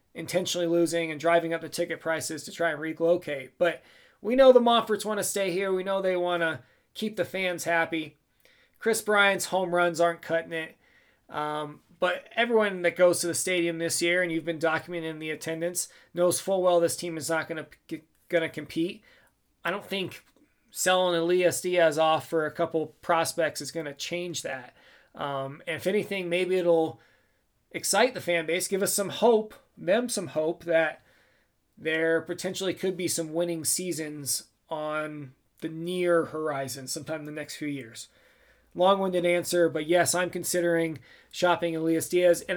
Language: English